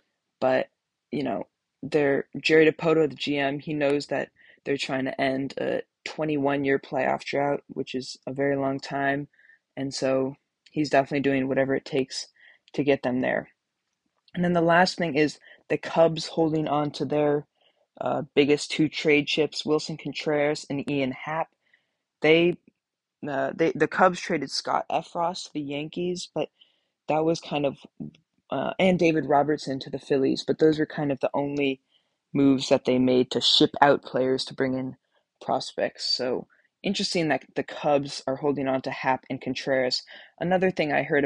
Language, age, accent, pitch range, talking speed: English, 20-39, American, 135-160 Hz, 170 wpm